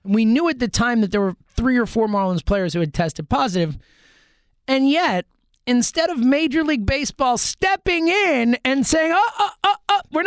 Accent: American